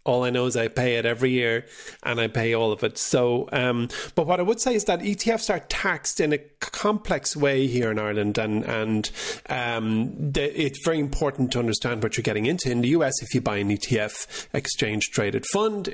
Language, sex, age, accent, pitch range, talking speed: English, male, 30-49, Irish, 110-135 Hz, 220 wpm